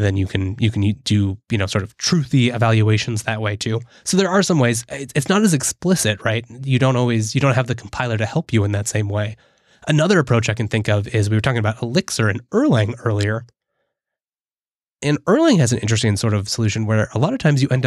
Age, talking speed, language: 20-39, 235 wpm, English